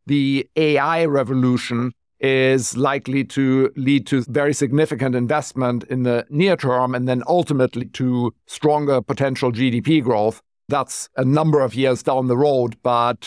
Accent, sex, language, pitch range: German, male, English, 125-150 Hz